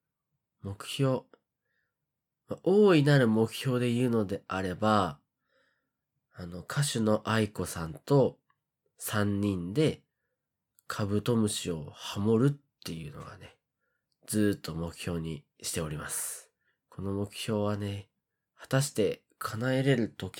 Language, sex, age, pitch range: Japanese, male, 20-39, 90-125 Hz